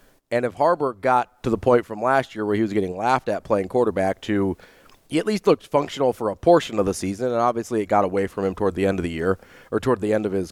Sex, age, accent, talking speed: male, 30-49, American, 280 wpm